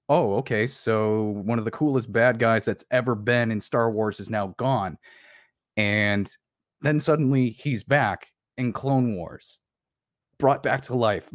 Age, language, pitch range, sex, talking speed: 20-39, English, 105-125 Hz, male, 160 wpm